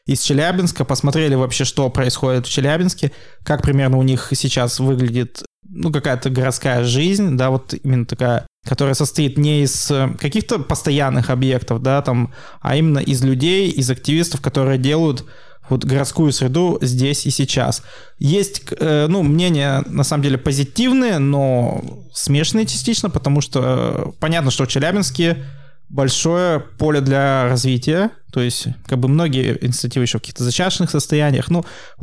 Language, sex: Russian, male